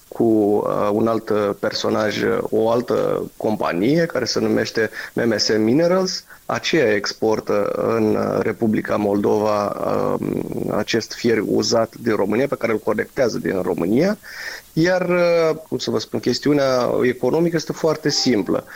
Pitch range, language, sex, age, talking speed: 120-150 Hz, Romanian, male, 30-49, 120 wpm